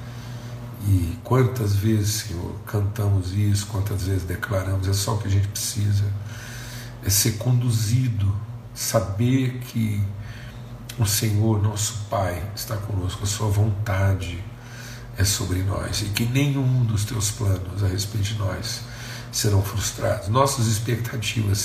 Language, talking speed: Portuguese, 130 wpm